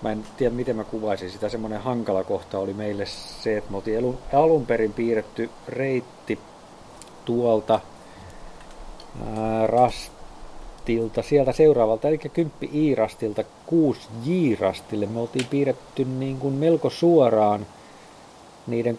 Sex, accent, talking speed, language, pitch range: male, native, 105 wpm, Finnish, 95-120 Hz